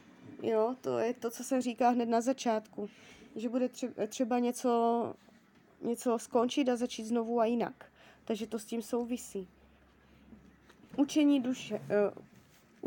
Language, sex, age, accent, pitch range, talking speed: Czech, female, 20-39, native, 225-255 Hz, 125 wpm